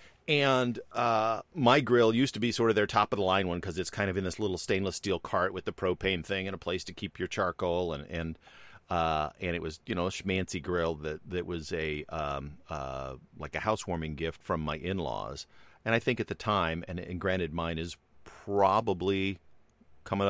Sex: male